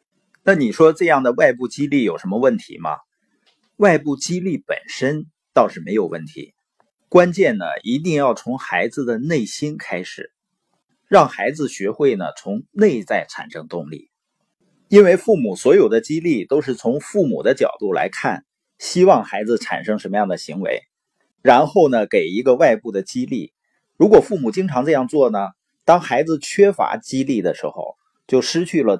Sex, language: male, Chinese